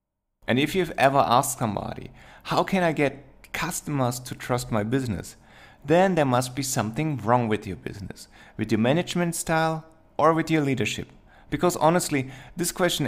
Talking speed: 165 wpm